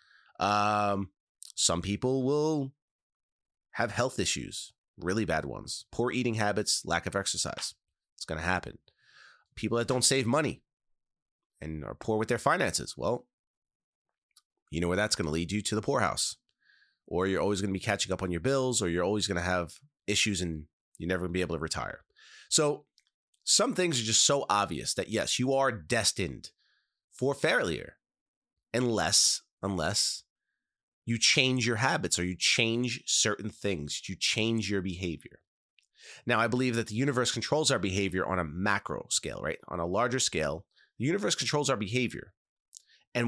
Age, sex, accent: 30-49, male, American